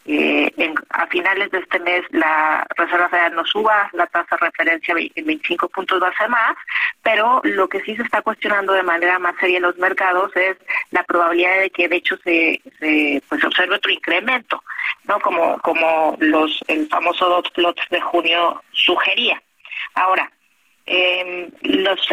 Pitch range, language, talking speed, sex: 175-215 Hz, Spanish, 175 wpm, female